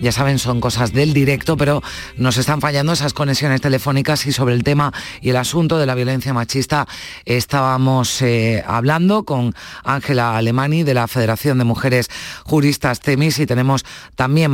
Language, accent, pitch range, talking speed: Spanish, Spanish, 115-135 Hz, 165 wpm